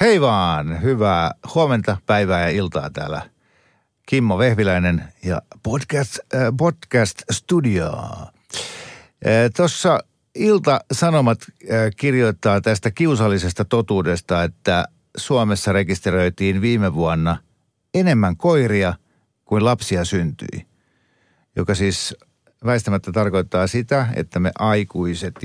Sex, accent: male, native